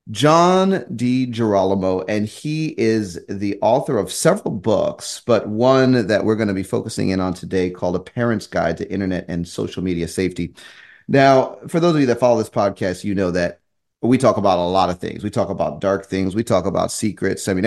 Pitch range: 100-130 Hz